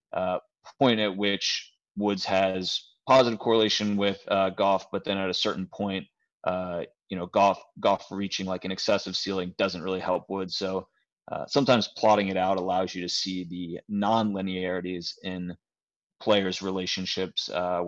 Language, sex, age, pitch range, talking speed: English, male, 20-39, 90-105 Hz, 160 wpm